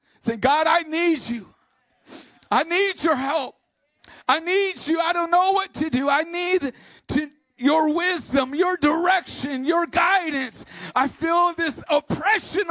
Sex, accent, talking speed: male, American, 145 wpm